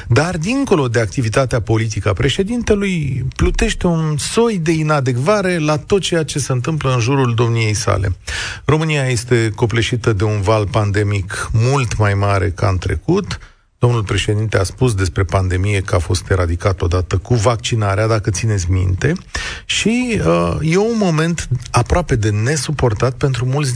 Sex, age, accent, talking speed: male, 40-59, native, 150 wpm